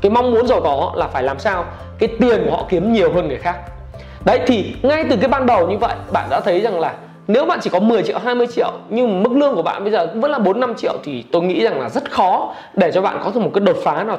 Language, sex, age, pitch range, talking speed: Vietnamese, male, 20-39, 185-260 Hz, 295 wpm